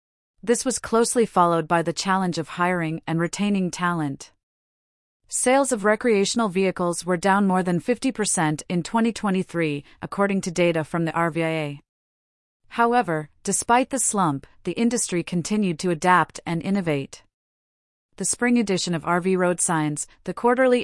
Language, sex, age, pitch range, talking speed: English, female, 40-59, 165-205 Hz, 140 wpm